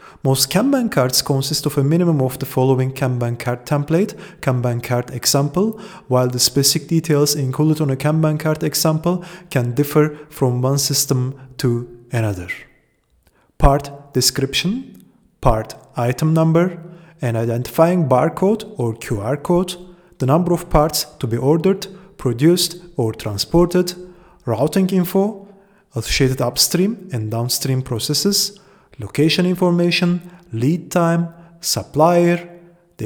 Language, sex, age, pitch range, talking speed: English, male, 30-49, 130-175 Hz, 120 wpm